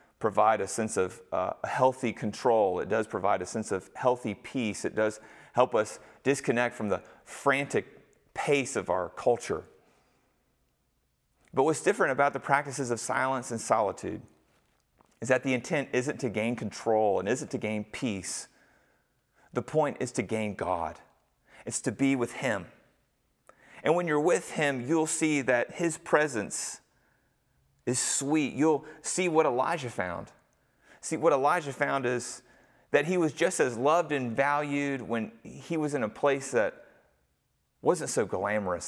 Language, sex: English, male